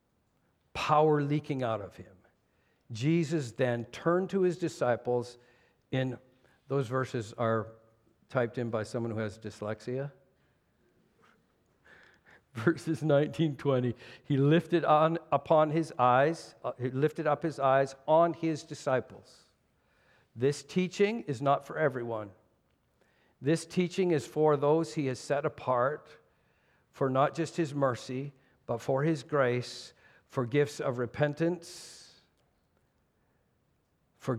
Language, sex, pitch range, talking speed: English, male, 125-165 Hz, 120 wpm